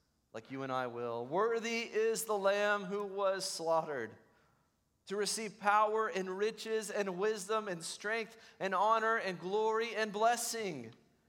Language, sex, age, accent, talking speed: English, male, 40-59, American, 145 wpm